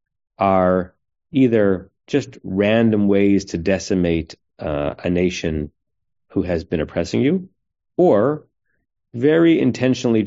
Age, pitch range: 30-49, 90-105 Hz